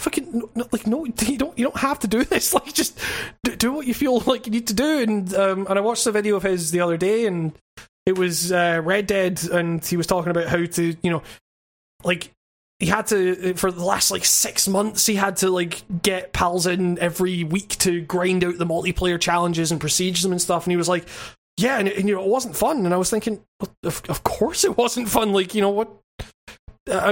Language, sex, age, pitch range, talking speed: English, male, 20-39, 175-210 Hz, 235 wpm